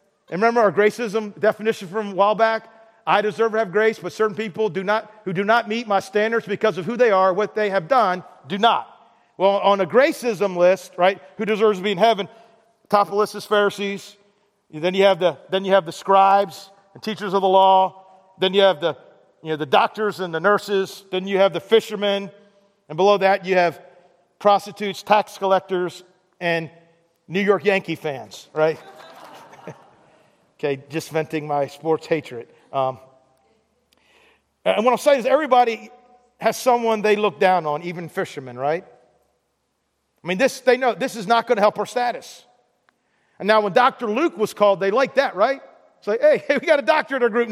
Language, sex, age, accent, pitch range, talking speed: English, male, 40-59, American, 185-225 Hz, 195 wpm